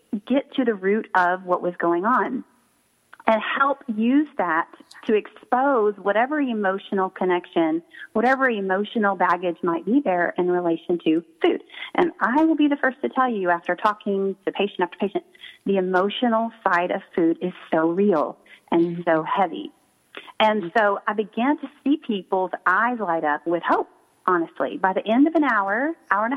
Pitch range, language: 185-255 Hz, English